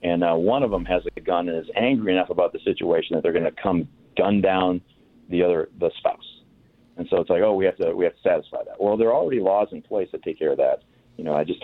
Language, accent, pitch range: English, American, 90-115 Hz